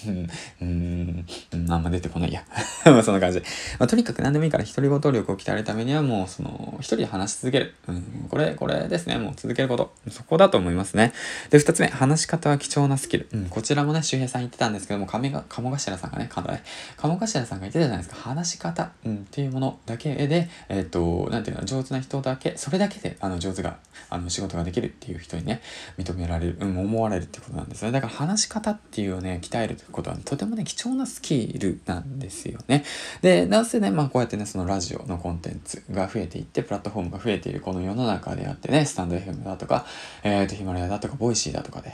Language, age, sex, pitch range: Japanese, 20-39, male, 95-140 Hz